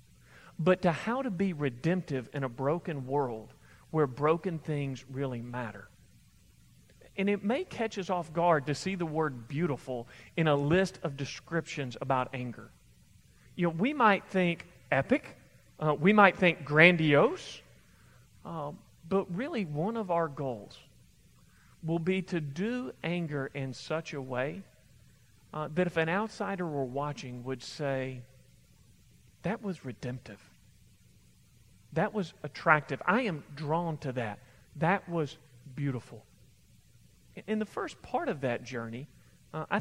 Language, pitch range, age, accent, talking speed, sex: English, 130-175 Hz, 40-59, American, 140 wpm, male